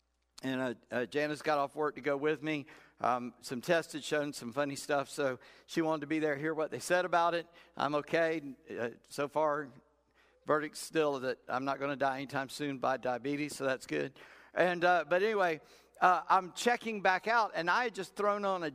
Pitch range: 140-180 Hz